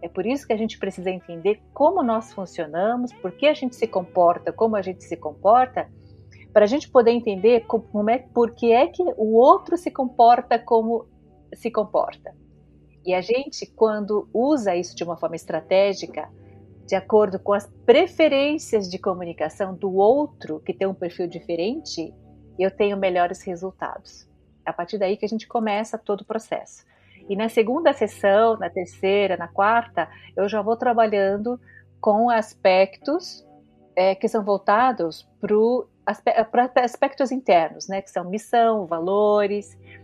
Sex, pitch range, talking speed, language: female, 175-225 Hz, 155 wpm, Portuguese